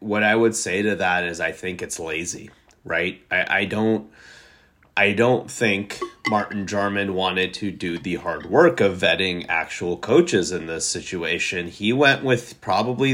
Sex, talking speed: male, 170 wpm